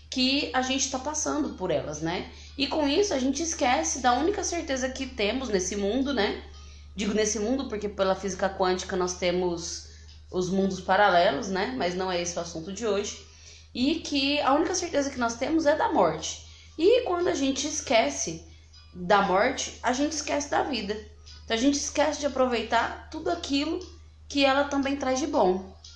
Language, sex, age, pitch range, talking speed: Portuguese, female, 20-39, 160-250 Hz, 185 wpm